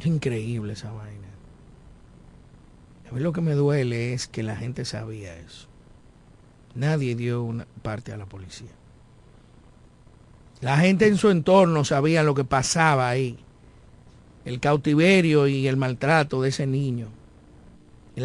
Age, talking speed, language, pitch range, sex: 50-69, 135 wpm, Spanish, 100-170 Hz, male